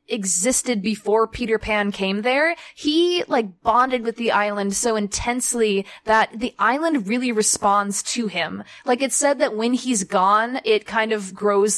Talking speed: 165 wpm